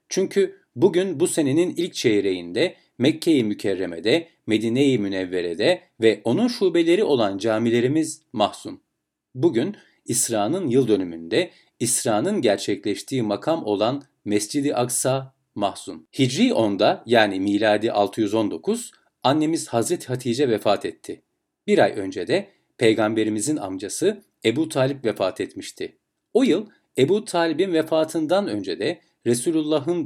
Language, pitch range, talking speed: Turkish, 110-165 Hz, 110 wpm